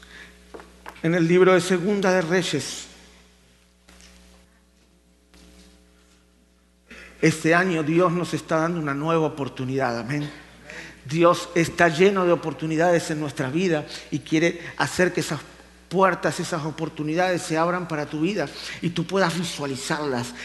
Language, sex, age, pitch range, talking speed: Spanish, male, 50-69, 155-195 Hz, 125 wpm